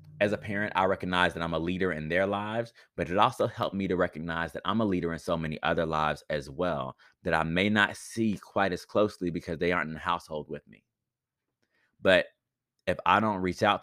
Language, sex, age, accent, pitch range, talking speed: English, male, 20-39, American, 80-95 Hz, 225 wpm